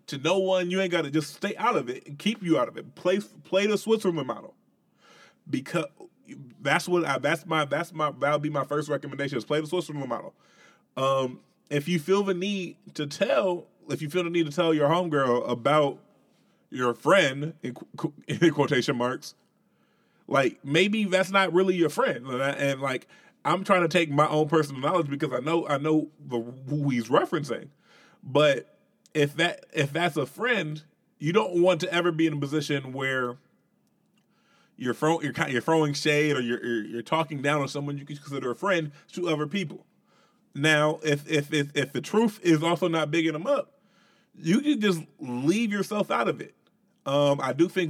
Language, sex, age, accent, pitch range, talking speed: English, male, 20-39, American, 140-175 Hz, 195 wpm